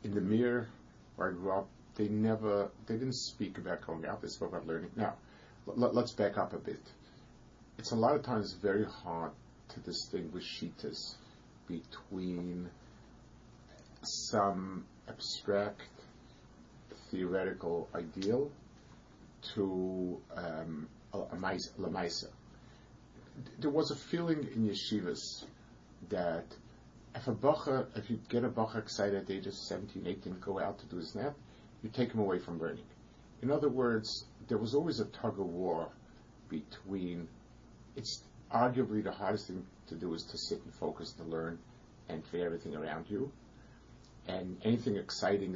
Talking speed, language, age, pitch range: 145 wpm, English, 50-69, 90-120 Hz